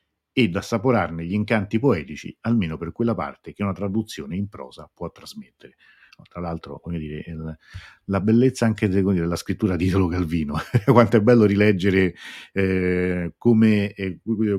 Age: 50-69